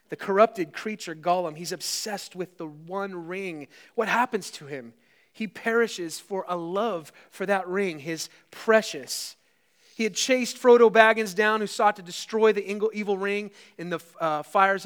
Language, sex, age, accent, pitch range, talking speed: English, male, 30-49, American, 155-205 Hz, 165 wpm